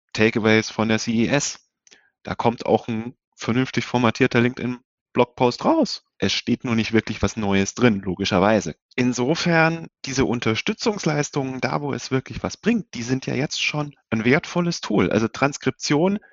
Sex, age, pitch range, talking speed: male, 30-49, 110-150 Hz, 155 wpm